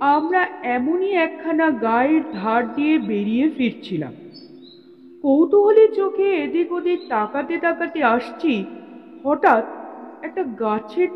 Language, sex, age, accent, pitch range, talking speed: Bengali, female, 50-69, native, 235-325 Hz, 85 wpm